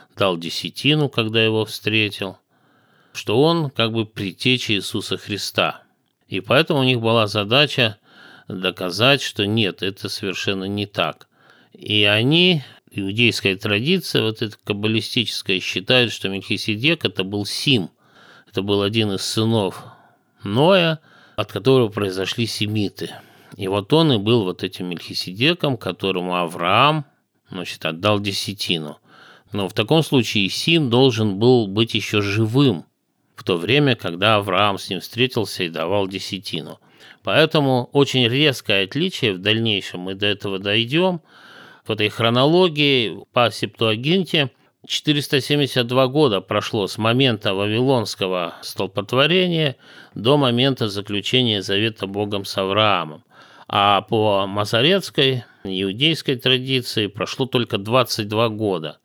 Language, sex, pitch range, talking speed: Russian, male, 100-130 Hz, 120 wpm